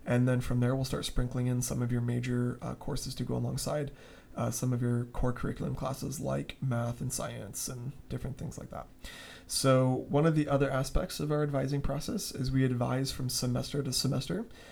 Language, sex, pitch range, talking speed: English, male, 125-135 Hz, 205 wpm